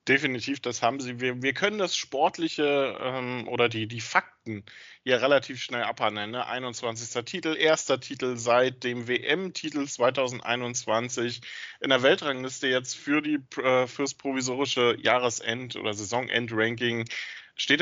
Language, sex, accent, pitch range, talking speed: German, male, German, 120-140 Hz, 130 wpm